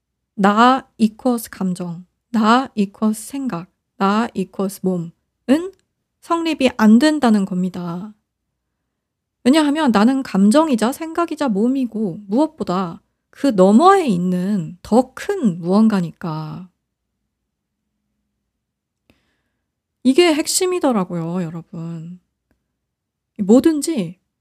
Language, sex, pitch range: Korean, female, 190-265 Hz